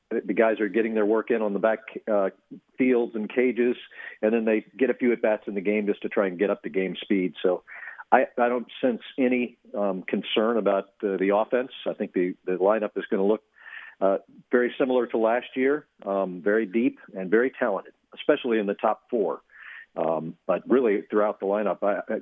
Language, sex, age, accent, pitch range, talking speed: English, male, 50-69, American, 100-125 Hz, 215 wpm